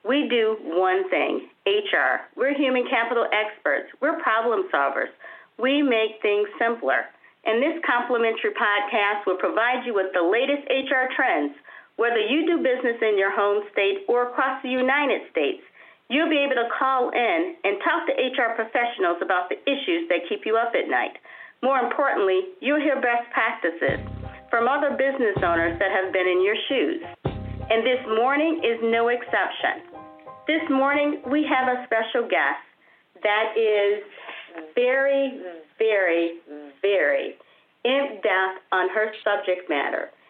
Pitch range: 195-275 Hz